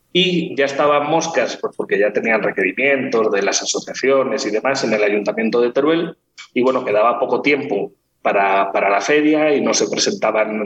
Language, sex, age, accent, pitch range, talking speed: Spanish, male, 30-49, Spanish, 115-155 Hz, 180 wpm